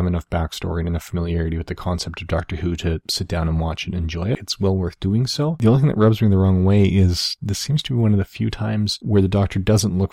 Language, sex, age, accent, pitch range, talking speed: English, male, 30-49, American, 90-105 Hz, 285 wpm